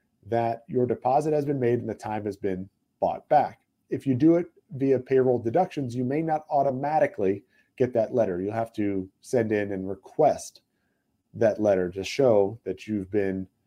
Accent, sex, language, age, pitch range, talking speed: American, male, English, 30-49, 110-140 Hz, 180 wpm